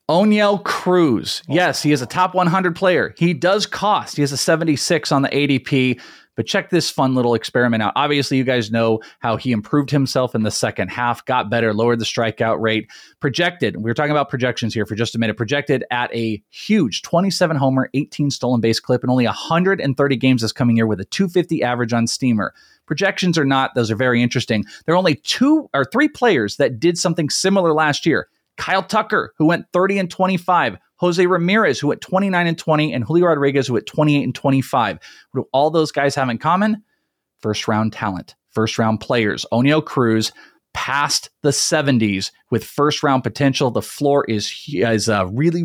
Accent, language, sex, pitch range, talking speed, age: American, English, male, 120-165 Hz, 195 wpm, 30-49